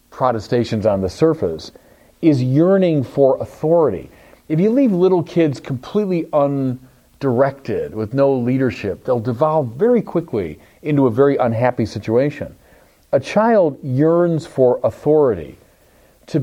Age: 40-59